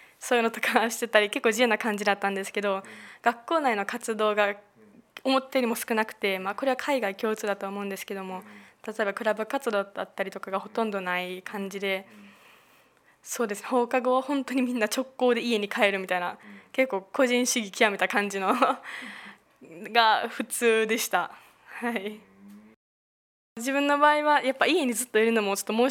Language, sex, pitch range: Japanese, female, 200-250 Hz